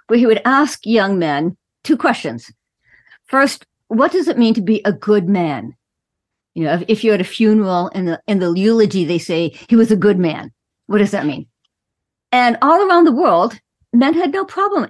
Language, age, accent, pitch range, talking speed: English, 50-69, American, 180-245 Hz, 205 wpm